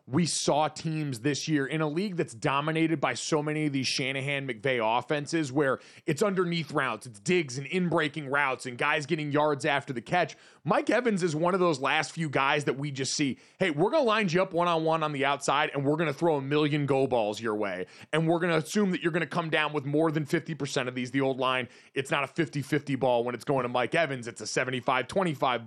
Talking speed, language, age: 250 wpm, English, 30-49